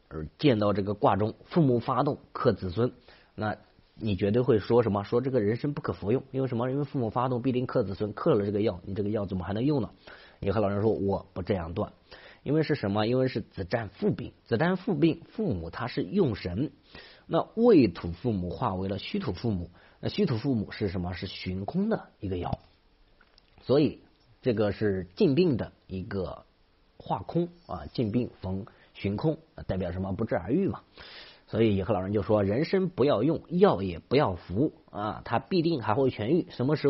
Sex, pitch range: male, 100-145 Hz